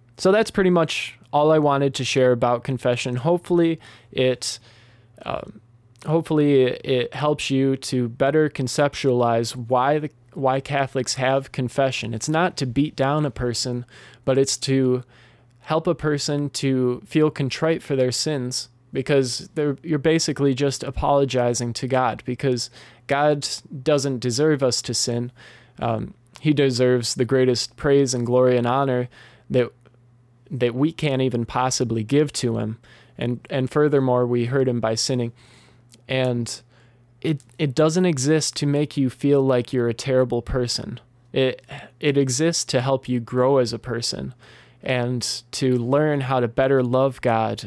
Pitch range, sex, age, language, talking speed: 120-140 Hz, male, 20-39, English, 150 wpm